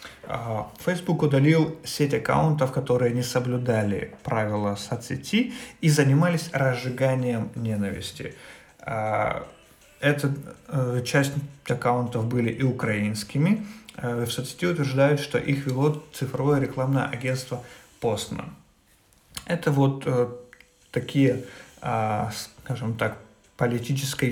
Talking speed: 85 wpm